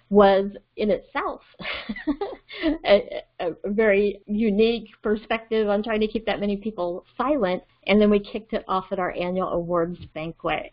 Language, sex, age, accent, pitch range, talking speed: English, female, 40-59, American, 180-215 Hz, 150 wpm